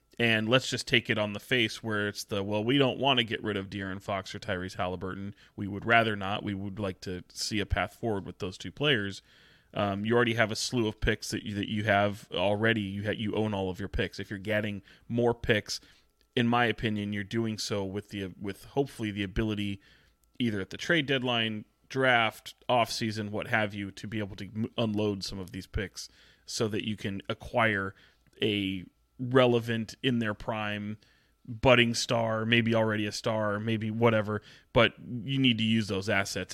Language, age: English, 30-49